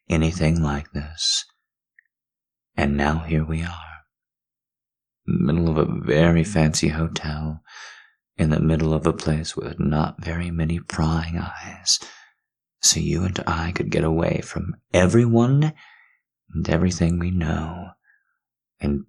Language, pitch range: English, 75-85 Hz